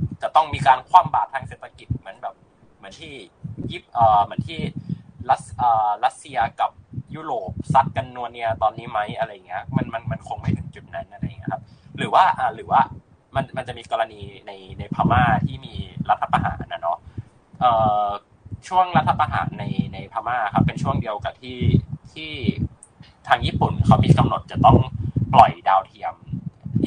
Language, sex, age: Thai, male, 20-39